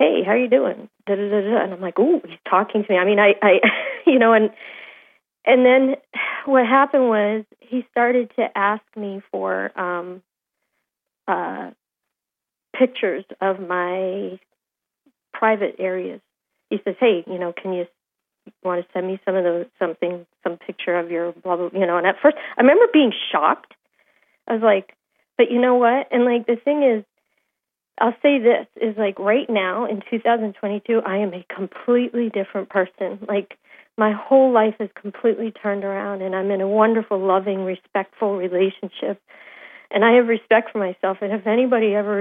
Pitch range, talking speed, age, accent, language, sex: 190-240 Hz, 180 wpm, 40-59, American, English, female